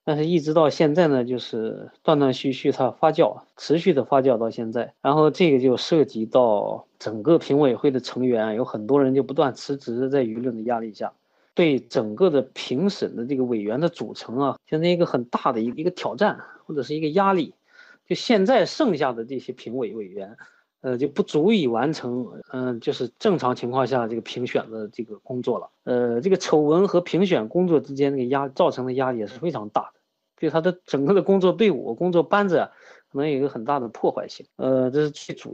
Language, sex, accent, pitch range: Chinese, male, native, 125-170 Hz